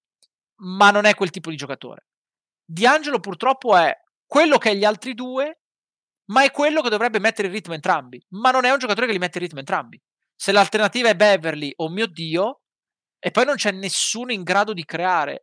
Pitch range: 150-205 Hz